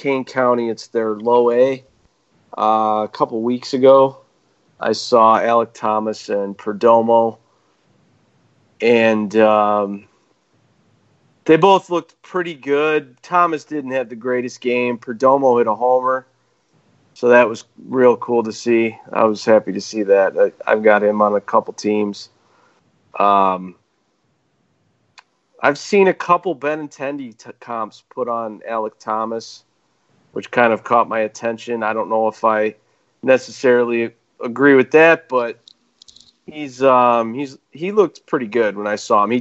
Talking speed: 145 wpm